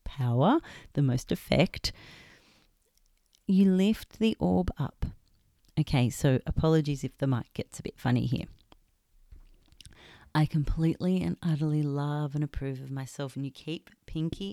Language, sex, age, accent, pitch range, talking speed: English, female, 40-59, Australian, 160-195 Hz, 135 wpm